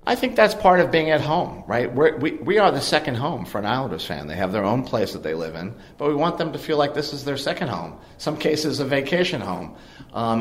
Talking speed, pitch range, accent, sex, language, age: 265 wpm, 110-150 Hz, American, male, English, 50-69